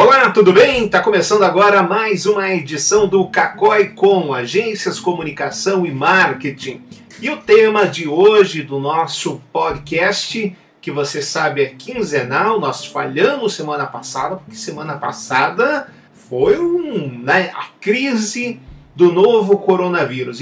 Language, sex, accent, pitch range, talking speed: Portuguese, male, Brazilian, 150-200 Hz, 130 wpm